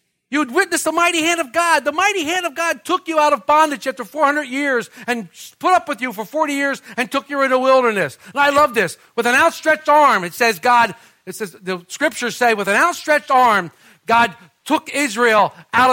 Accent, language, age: American, English, 60-79